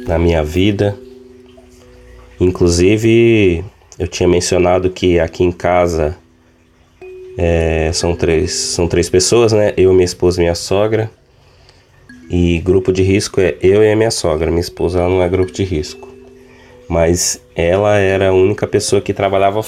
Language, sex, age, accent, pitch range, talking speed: Portuguese, male, 20-39, Brazilian, 90-105 Hz, 150 wpm